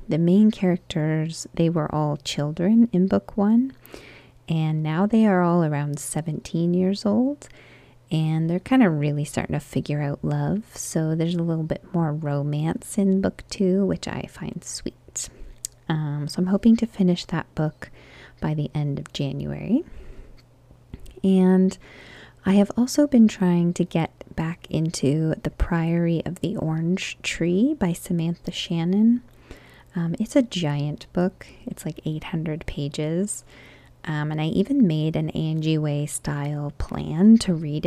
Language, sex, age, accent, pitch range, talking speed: English, female, 30-49, American, 150-190 Hz, 150 wpm